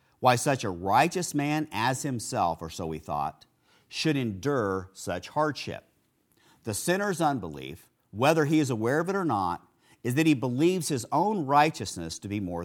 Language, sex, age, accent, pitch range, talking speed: English, male, 50-69, American, 100-150 Hz, 170 wpm